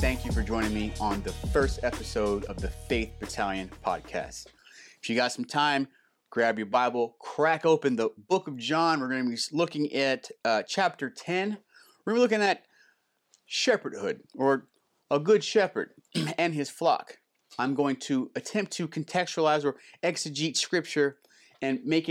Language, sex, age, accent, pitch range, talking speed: English, male, 30-49, American, 120-160 Hz, 165 wpm